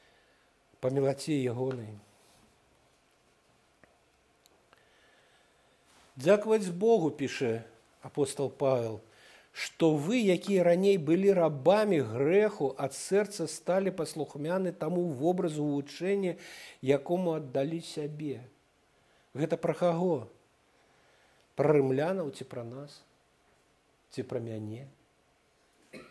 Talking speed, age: 75 wpm, 50-69